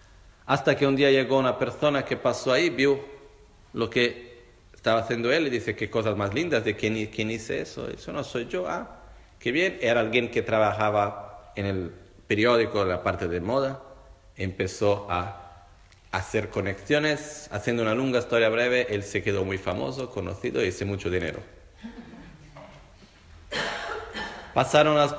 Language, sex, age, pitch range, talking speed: Italian, male, 40-59, 100-140 Hz, 160 wpm